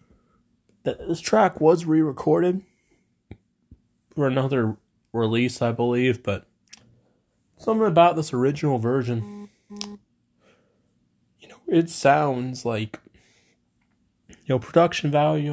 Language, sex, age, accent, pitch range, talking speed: English, male, 20-39, American, 115-155 Hz, 95 wpm